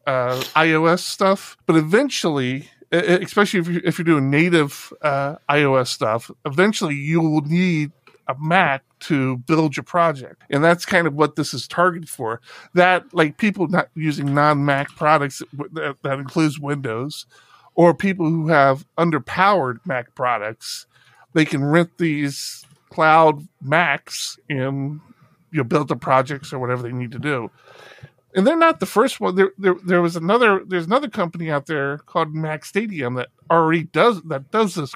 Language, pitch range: English, 145-180 Hz